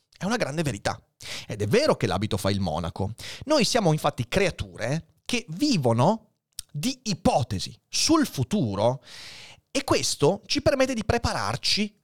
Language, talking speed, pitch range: Italian, 140 wpm, 115-190 Hz